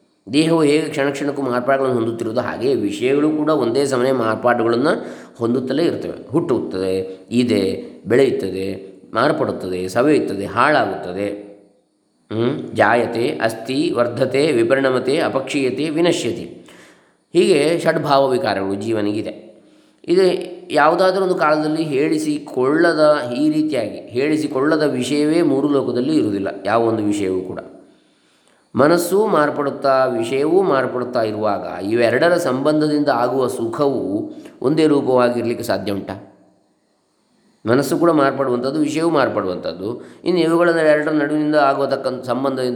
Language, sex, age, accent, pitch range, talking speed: English, male, 20-39, Indian, 115-160 Hz, 115 wpm